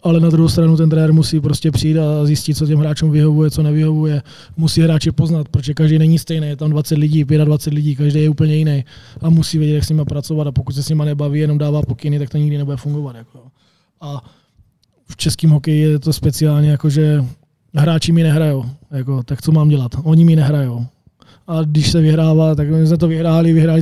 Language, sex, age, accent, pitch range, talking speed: Czech, male, 20-39, native, 150-165 Hz, 215 wpm